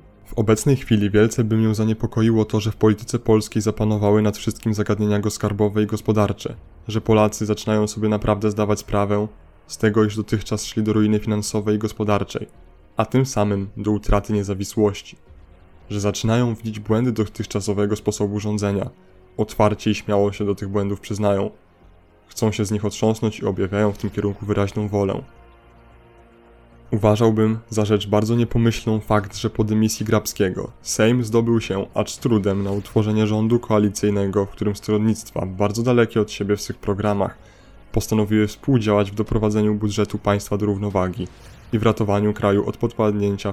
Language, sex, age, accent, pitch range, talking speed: Polish, male, 20-39, native, 105-110 Hz, 155 wpm